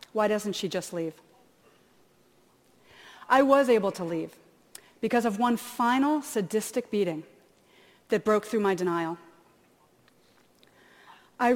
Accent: American